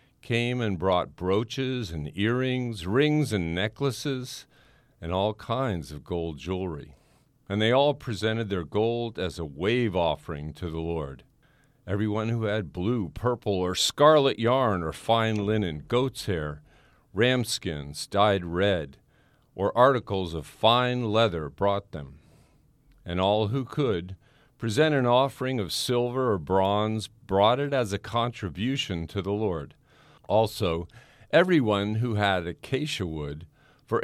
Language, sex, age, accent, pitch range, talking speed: English, male, 50-69, American, 90-125 Hz, 140 wpm